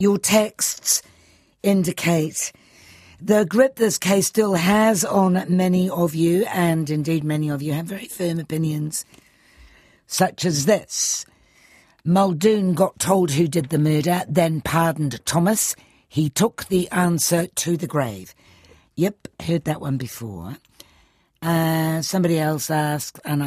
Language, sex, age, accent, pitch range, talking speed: English, female, 60-79, British, 135-175 Hz, 135 wpm